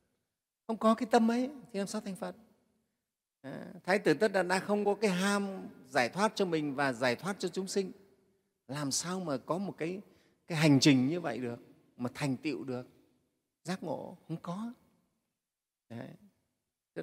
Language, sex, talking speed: Vietnamese, male, 180 wpm